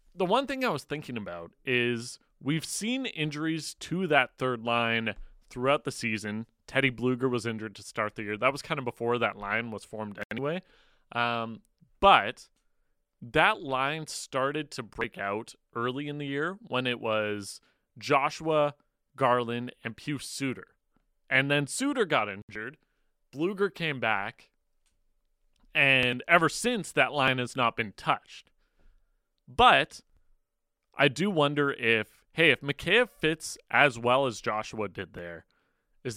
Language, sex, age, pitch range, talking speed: English, male, 30-49, 110-145 Hz, 150 wpm